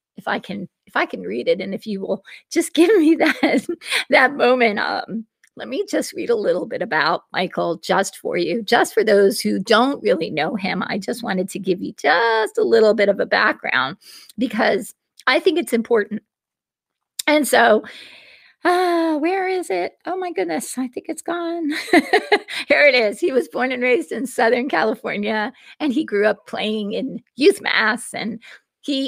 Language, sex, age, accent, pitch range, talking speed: English, female, 40-59, American, 220-345 Hz, 190 wpm